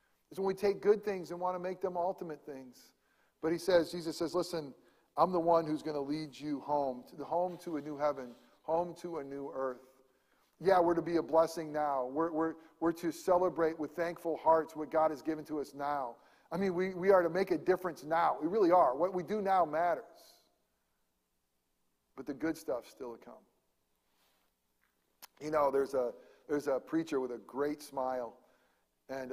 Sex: male